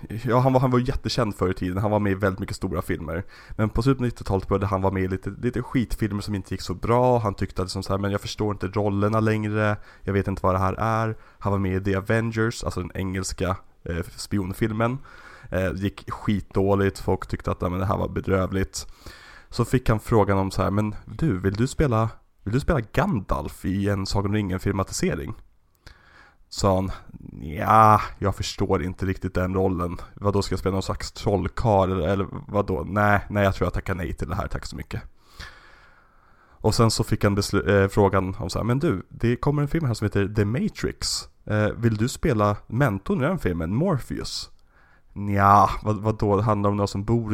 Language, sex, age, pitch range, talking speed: Swedish, male, 20-39, 95-110 Hz, 210 wpm